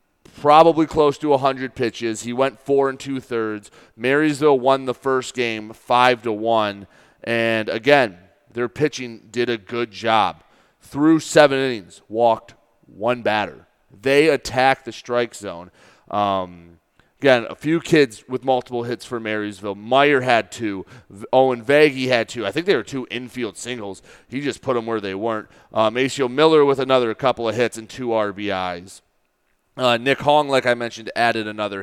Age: 30-49